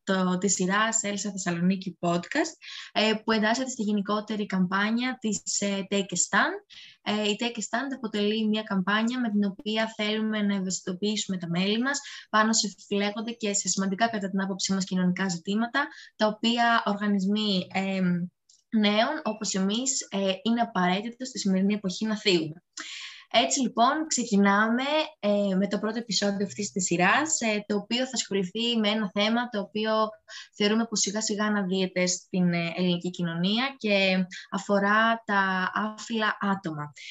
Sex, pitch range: female, 185-220 Hz